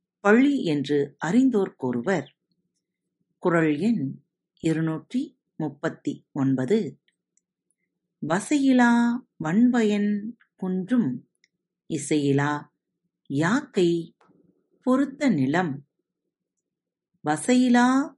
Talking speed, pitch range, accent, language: 35 wpm, 150-230 Hz, native, Tamil